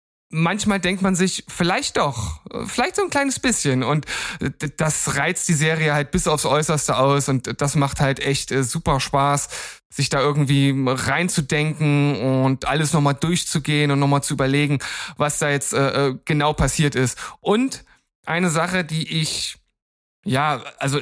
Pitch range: 140-165 Hz